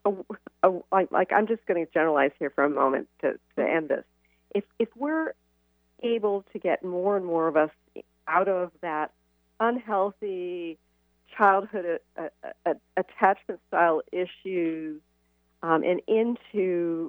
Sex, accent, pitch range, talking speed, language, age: female, American, 155-195 Hz, 135 wpm, English, 40-59